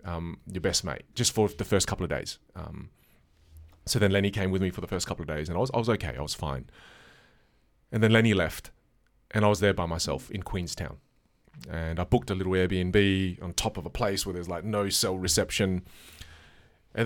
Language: English